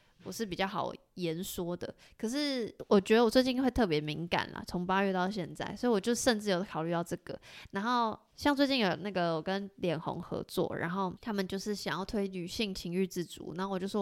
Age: 20-39